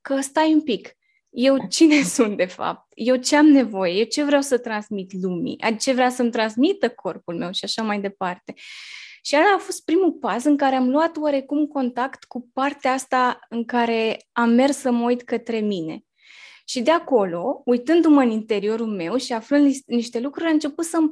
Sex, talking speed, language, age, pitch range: female, 190 wpm, Romanian, 20-39, 215-265 Hz